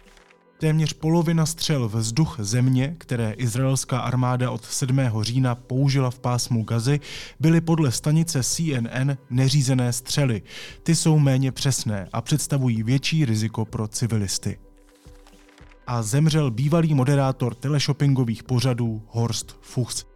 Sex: male